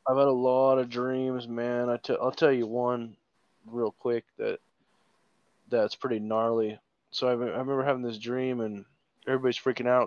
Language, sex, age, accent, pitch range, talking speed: English, male, 20-39, American, 110-130 Hz, 180 wpm